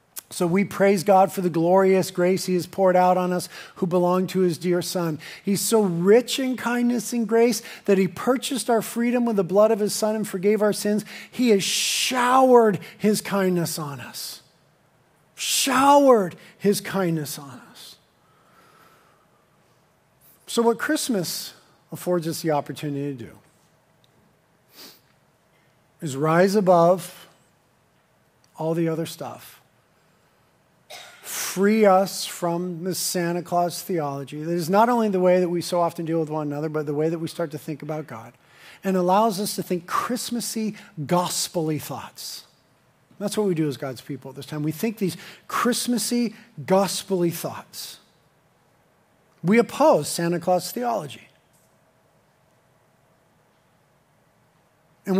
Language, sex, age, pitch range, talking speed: English, male, 50-69, 165-205 Hz, 140 wpm